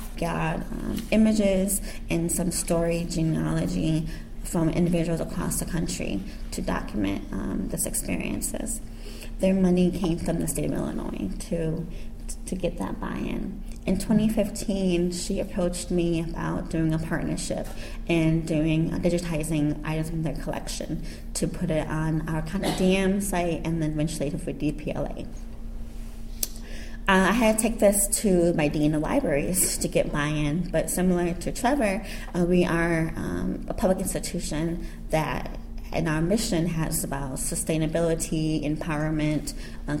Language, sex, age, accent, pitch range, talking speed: English, female, 20-39, American, 155-185 Hz, 140 wpm